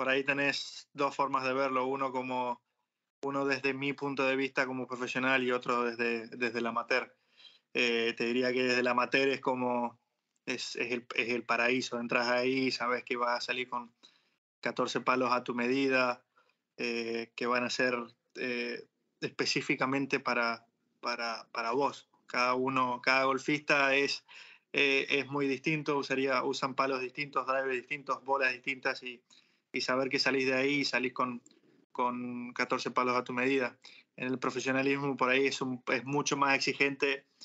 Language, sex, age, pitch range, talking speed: English, male, 20-39, 125-135 Hz, 170 wpm